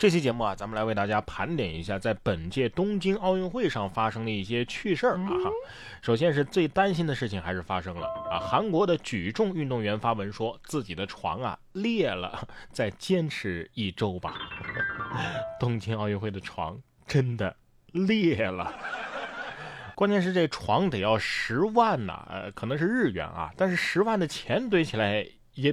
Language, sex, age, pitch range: Chinese, male, 20-39, 110-170 Hz